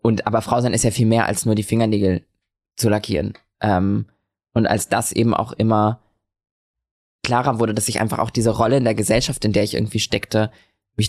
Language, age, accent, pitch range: German, 20-39, German, 105-125 Hz